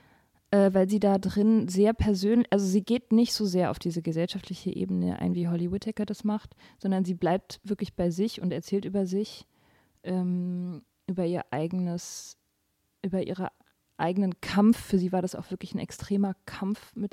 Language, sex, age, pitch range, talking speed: German, female, 20-39, 180-210 Hz, 175 wpm